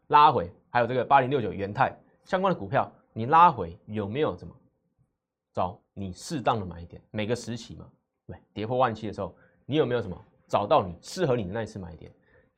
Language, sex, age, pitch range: Chinese, male, 20-39, 95-130 Hz